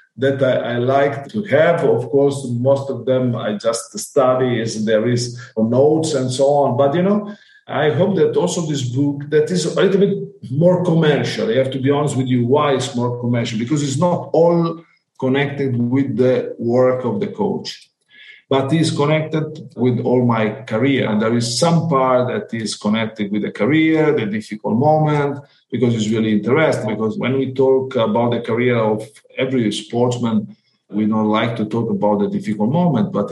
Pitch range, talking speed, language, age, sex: 115-150 Hz, 185 wpm, English, 50-69, male